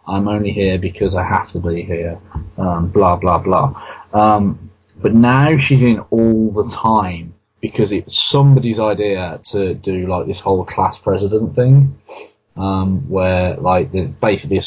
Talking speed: 160 wpm